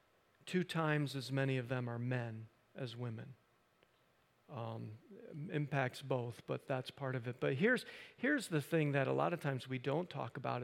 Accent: American